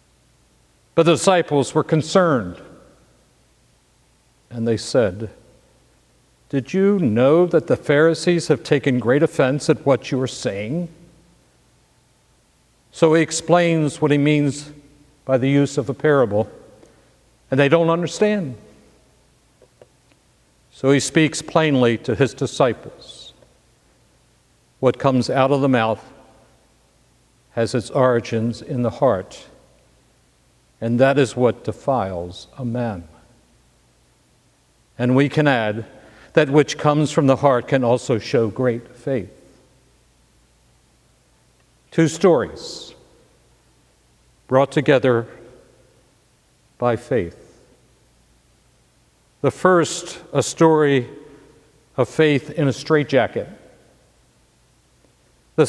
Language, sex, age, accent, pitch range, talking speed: English, male, 60-79, American, 120-155 Hz, 105 wpm